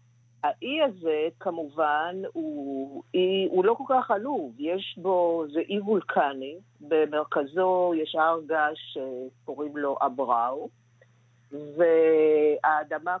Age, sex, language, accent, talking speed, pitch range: 50-69, female, Hebrew, native, 100 wpm, 145-205 Hz